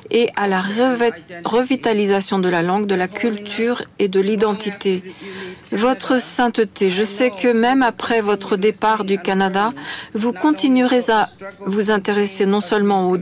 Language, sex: French, female